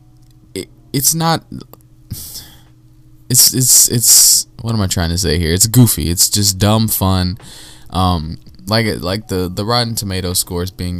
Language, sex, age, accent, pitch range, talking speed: English, male, 20-39, American, 85-105 Hz, 155 wpm